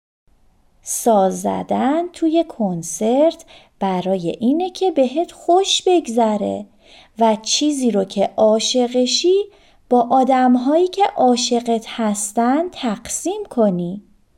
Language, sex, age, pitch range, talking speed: Persian, female, 30-49, 195-315 Hz, 90 wpm